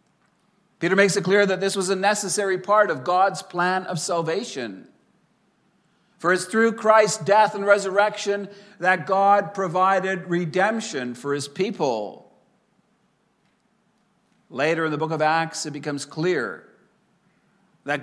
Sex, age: male, 50-69